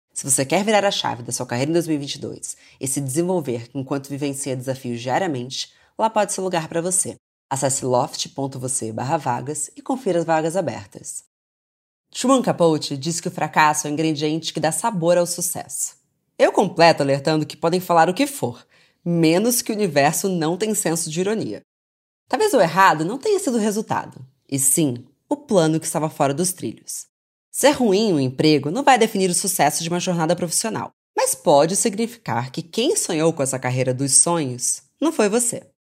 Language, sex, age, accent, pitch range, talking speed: Portuguese, female, 20-39, Brazilian, 140-190 Hz, 180 wpm